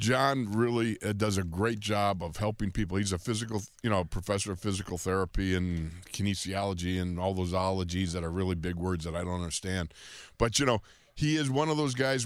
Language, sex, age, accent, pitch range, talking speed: English, male, 50-69, American, 85-100 Hz, 205 wpm